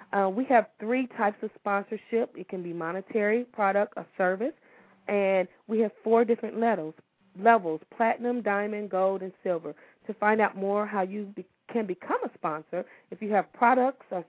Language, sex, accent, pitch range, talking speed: English, female, American, 190-235 Hz, 170 wpm